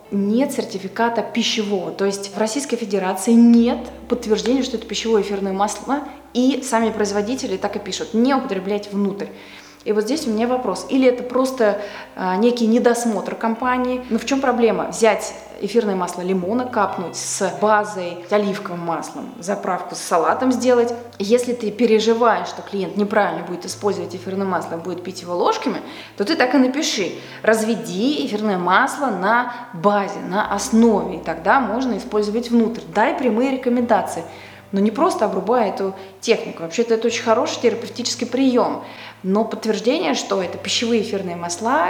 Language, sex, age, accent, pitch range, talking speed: Russian, female, 20-39, native, 195-240 Hz, 155 wpm